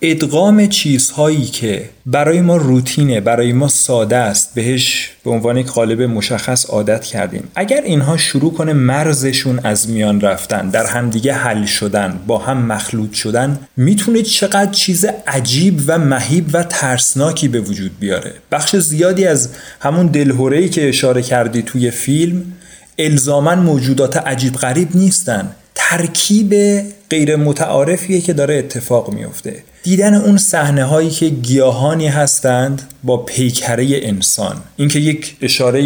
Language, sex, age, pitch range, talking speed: Persian, male, 30-49, 120-155 Hz, 135 wpm